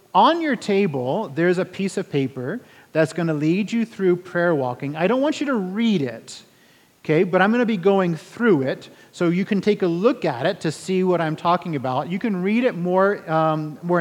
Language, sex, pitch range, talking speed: English, male, 150-200 Hz, 225 wpm